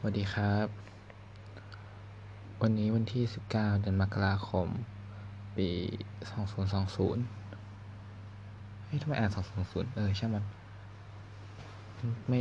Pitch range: 100-105 Hz